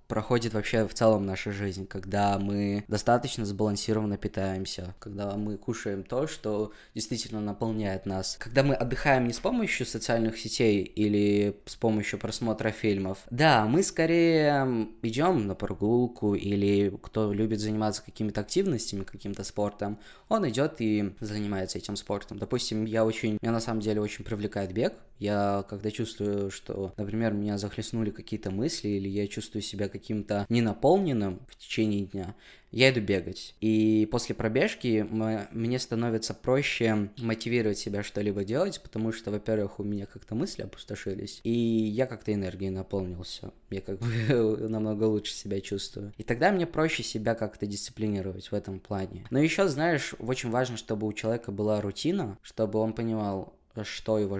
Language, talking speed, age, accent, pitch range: Russian, 155 wpm, 20-39, native, 100-115 Hz